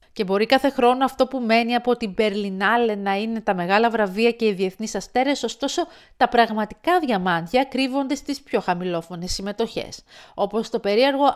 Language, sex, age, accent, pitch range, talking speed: Greek, female, 40-59, native, 200-270 Hz, 165 wpm